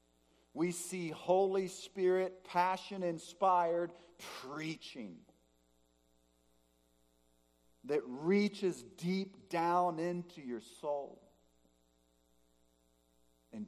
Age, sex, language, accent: 50-69, male, English, American